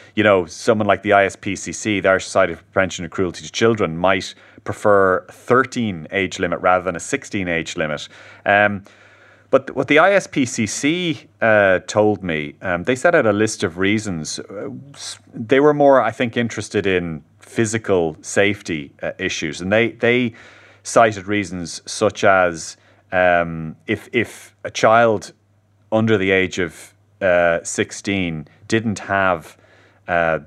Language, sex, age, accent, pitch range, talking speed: English, male, 30-49, Irish, 85-105 Hz, 150 wpm